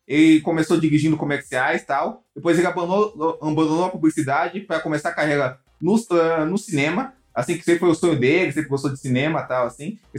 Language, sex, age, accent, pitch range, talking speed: Portuguese, male, 20-39, Brazilian, 145-195 Hz, 195 wpm